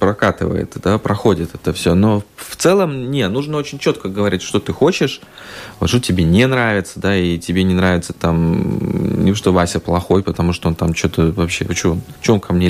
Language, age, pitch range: Russian, 20-39, 90-125 Hz